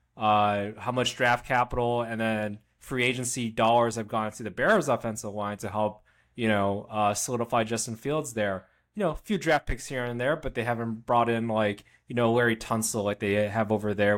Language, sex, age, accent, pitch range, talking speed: English, male, 20-39, American, 110-135 Hz, 210 wpm